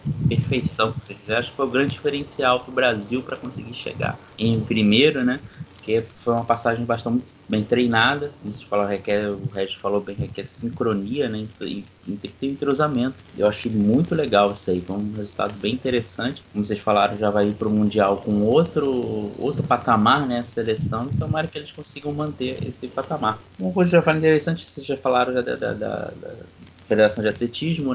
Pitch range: 110-135 Hz